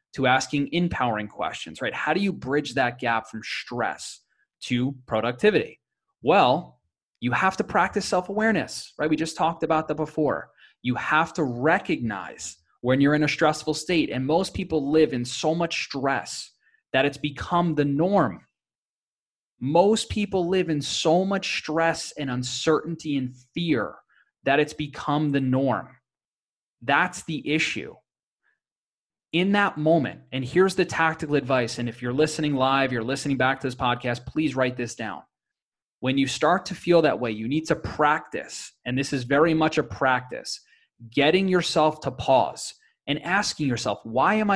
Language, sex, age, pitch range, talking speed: English, male, 20-39, 130-165 Hz, 160 wpm